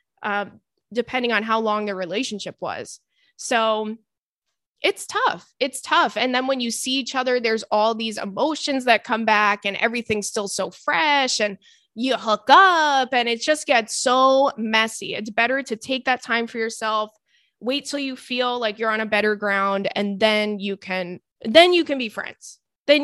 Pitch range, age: 210-265 Hz, 20-39